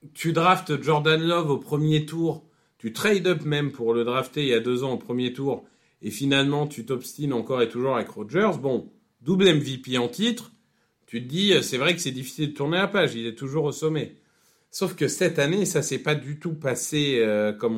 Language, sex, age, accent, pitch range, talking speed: French, male, 40-59, French, 130-170 Hz, 215 wpm